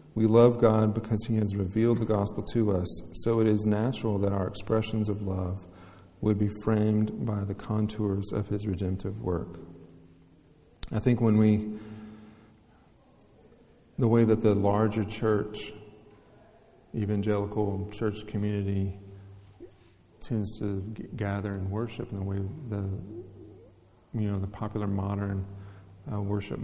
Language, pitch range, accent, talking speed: English, 100-110 Hz, American, 135 wpm